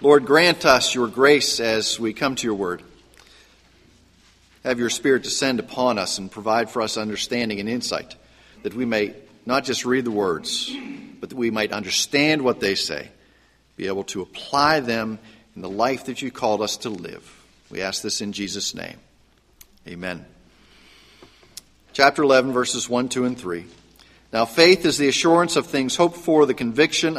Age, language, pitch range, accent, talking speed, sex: 50-69, English, 110-150 Hz, American, 175 wpm, male